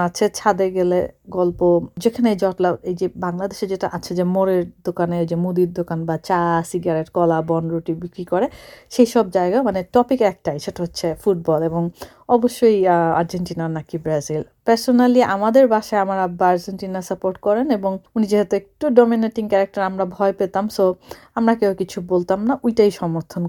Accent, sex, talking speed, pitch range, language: native, female, 160 wpm, 175-220 Hz, Bengali